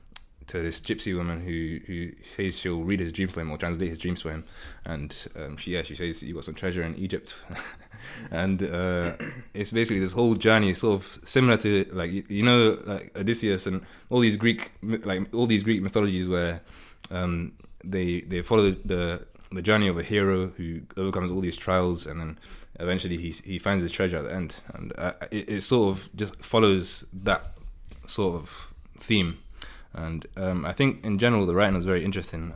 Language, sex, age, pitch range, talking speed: English, male, 20-39, 85-105 Hz, 195 wpm